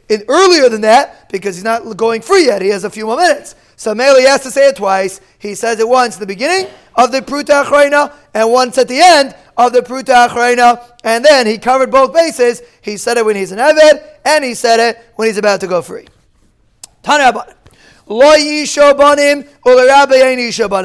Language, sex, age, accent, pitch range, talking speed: English, male, 30-49, American, 210-265 Hz, 195 wpm